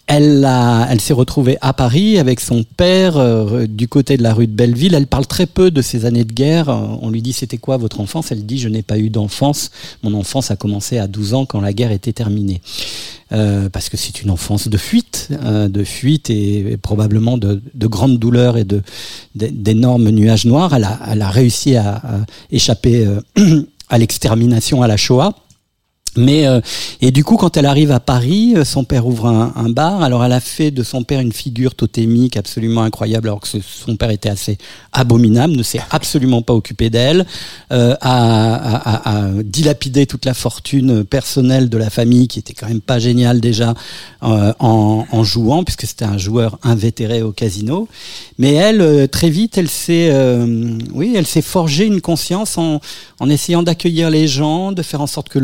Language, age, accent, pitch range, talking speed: French, 50-69, French, 110-140 Hz, 200 wpm